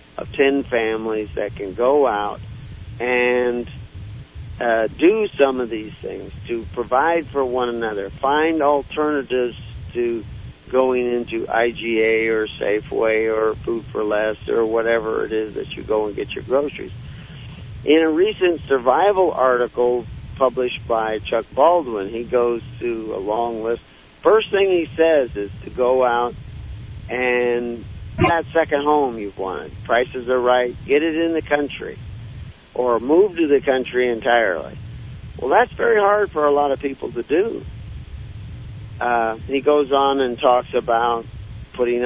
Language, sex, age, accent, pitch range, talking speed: English, male, 50-69, American, 110-135 Hz, 150 wpm